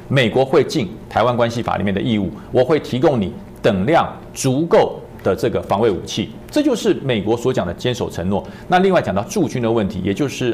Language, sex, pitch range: Chinese, male, 105-155 Hz